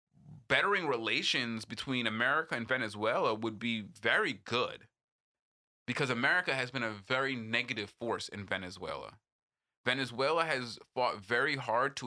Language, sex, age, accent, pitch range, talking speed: English, male, 20-39, American, 110-125 Hz, 130 wpm